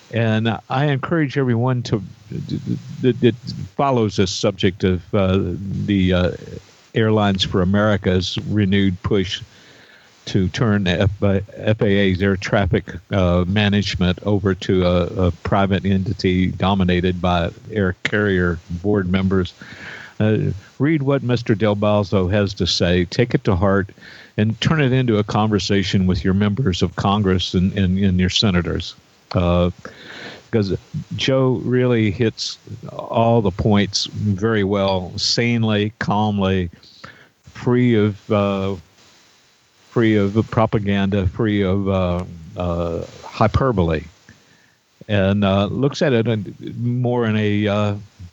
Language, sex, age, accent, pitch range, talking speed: English, male, 50-69, American, 95-115 Hz, 125 wpm